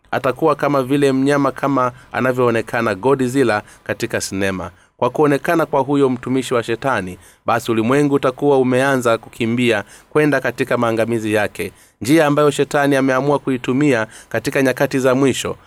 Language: Swahili